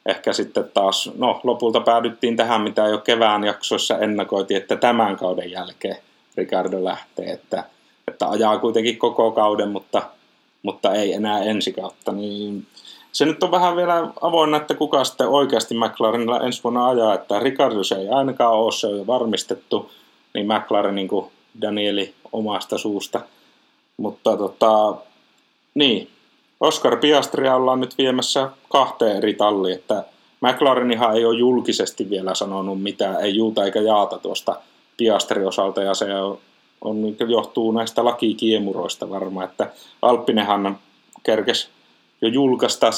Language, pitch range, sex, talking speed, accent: Finnish, 100-120 Hz, male, 135 wpm, native